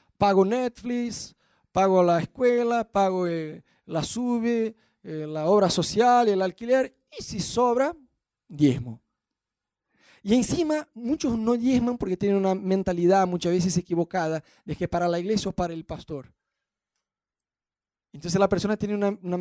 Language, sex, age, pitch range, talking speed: Spanish, male, 20-39, 160-225 Hz, 140 wpm